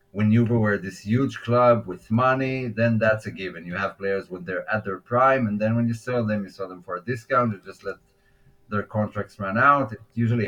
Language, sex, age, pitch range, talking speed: English, male, 30-49, 95-120 Hz, 235 wpm